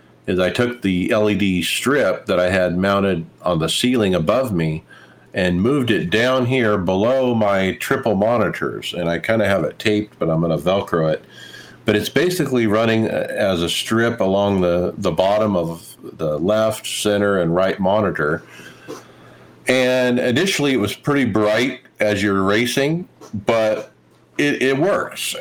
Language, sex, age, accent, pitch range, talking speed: English, male, 50-69, American, 90-115 Hz, 160 wpm